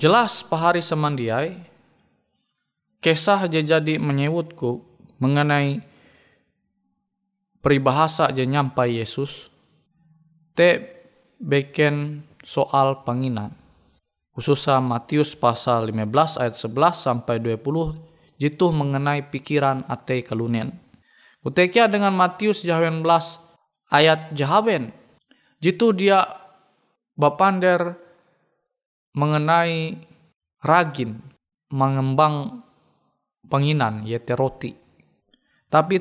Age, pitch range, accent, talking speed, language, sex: 20-39, 135-175 Hz, native, 70 wpm, Indonesian, male